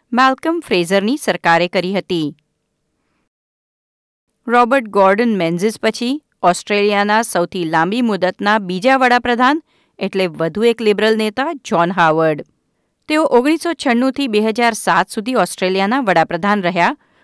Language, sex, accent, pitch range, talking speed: Gujarati, female, native, 185-255 Hz, 105 wpm